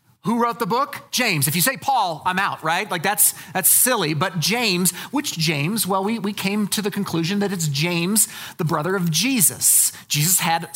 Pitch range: 155-205 Hz